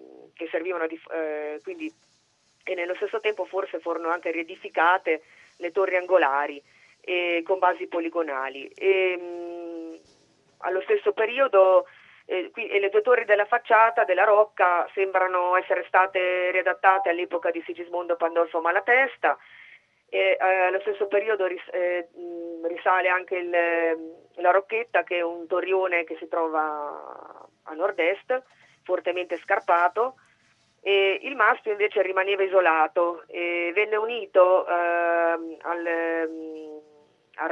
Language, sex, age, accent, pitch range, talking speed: Italian, female, 30-49, native, 170-195 Hz, 125 wpm